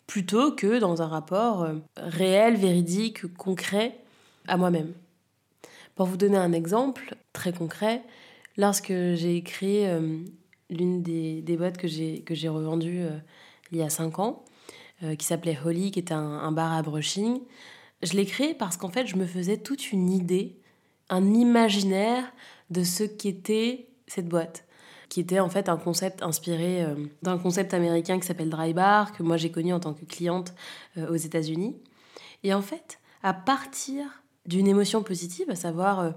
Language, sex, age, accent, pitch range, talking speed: French, female, 20-39, French, 170-210 Hz, 170 wpm